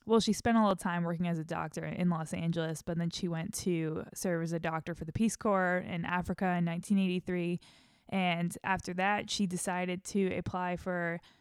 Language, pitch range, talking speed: English, 170-200 Hz, 205 wpm